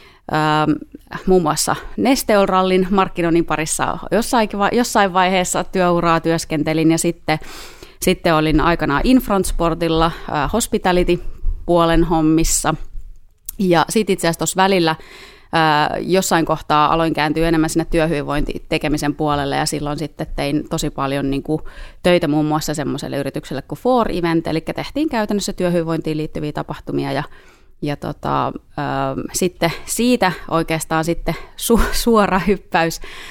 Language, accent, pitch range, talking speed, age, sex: Finnish, native, 150-185 Hz, 125 wpm, 30-49, female